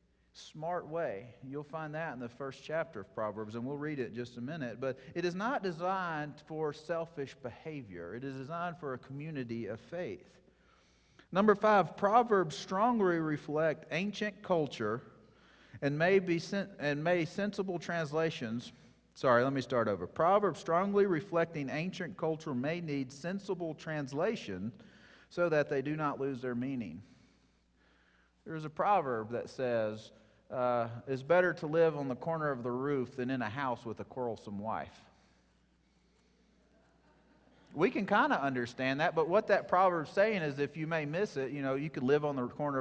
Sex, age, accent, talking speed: male, 40-59, American, 170 wpm